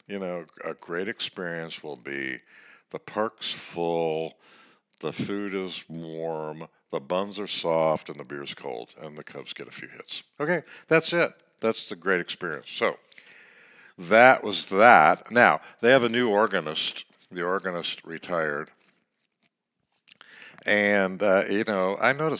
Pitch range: 85-110 Hz